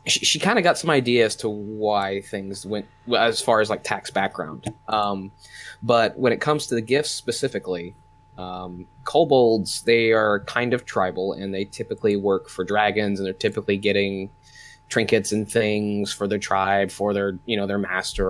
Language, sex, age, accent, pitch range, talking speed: English, male, 20-39, American, 100-115 Hz, 185 wpm